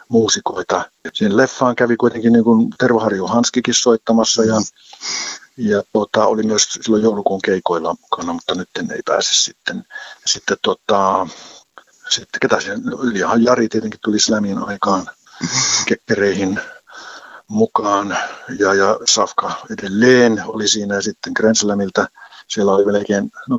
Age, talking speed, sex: 50-69, 110 wpm, male